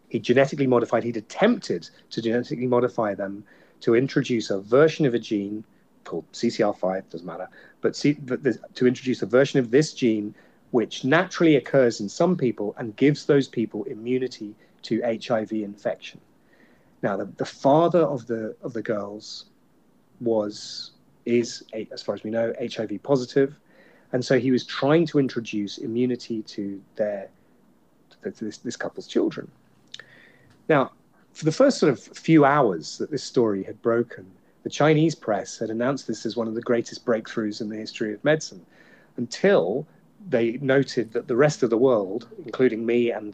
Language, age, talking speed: English, 30-49, 160 wpm